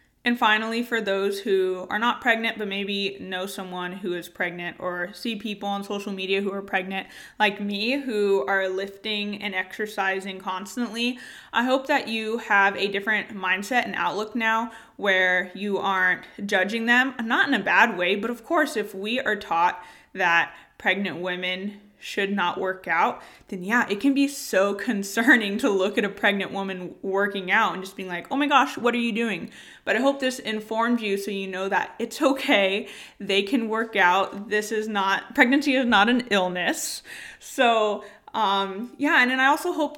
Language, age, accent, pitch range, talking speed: English, 20-39, American, 195-235 Hz, 190 wpm